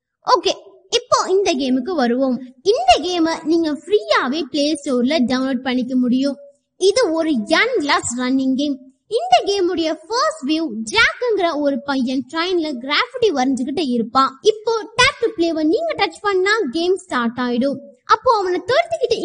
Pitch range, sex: 270-385 Hz, female